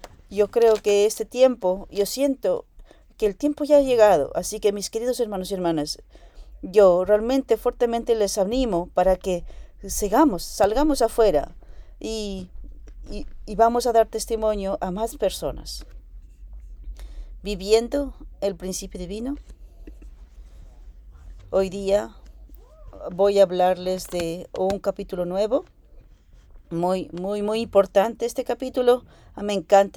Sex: female